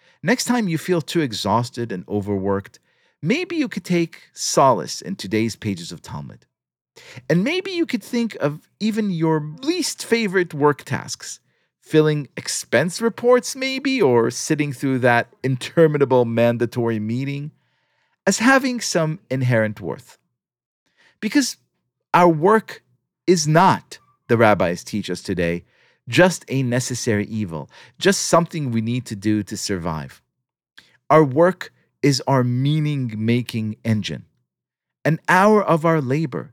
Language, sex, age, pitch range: English, male, 40-59, 115-175 Hz